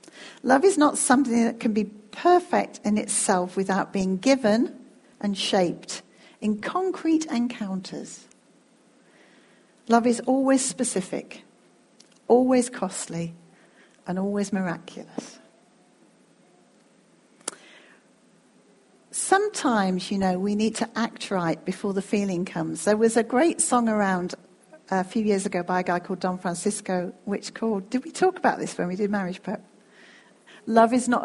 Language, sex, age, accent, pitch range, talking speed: English, female, 50-69, British, 195-265 Hz, 135 wpm